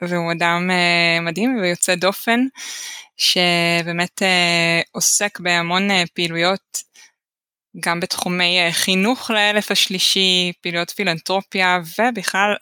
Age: 20-39